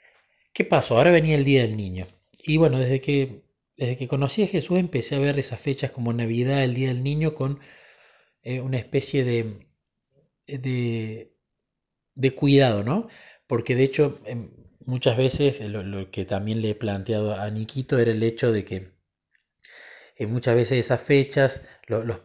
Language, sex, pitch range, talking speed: Spanish, male, 105-135 Hz, 175 wpm